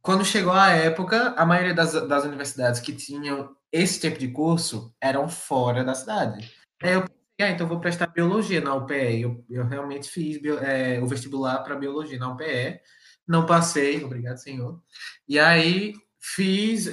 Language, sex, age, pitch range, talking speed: Portuguese, male, 20-39, 140-195 Hz, 165 wpm